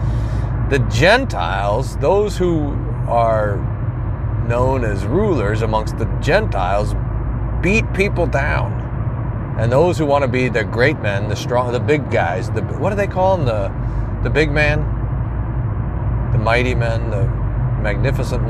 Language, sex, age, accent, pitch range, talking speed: English, male, 40-59, American, 110-120 Hz, 140 wpm